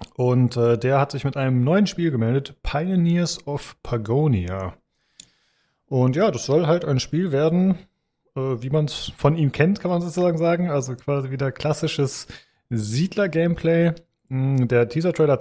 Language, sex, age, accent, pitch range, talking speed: German, male, 30-49, German, 120-155 Hz, 150 wpm